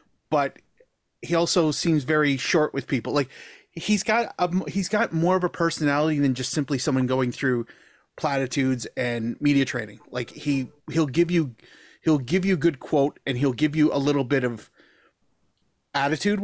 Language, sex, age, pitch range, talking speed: English, male, 30-49, 130-165 Hz, 175 wpm